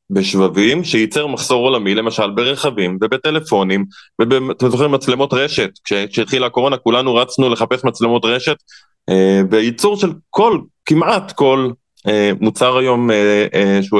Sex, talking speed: male, 110 wpm